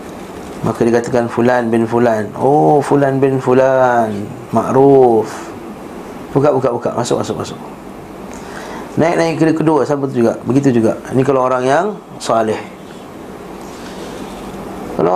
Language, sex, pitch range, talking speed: Malay, male, 120-145 Hz, 105 wpm